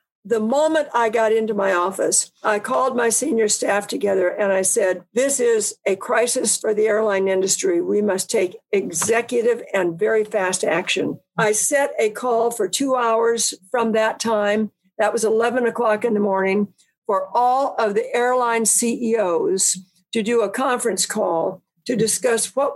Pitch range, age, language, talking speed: 205-255 Hz, 60-79, English, 165 wpm